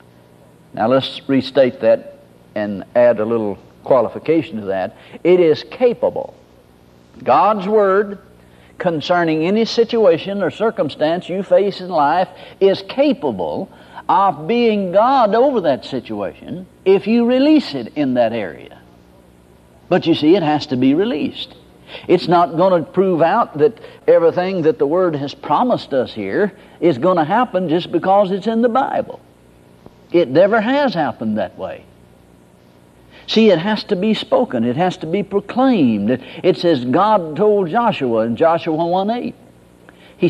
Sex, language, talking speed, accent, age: male, English, 150 wpm, American, 60-79